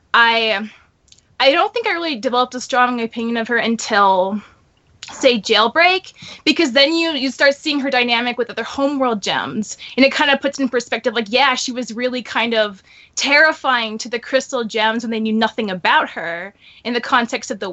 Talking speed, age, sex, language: 195 wpm, 20-39, female, English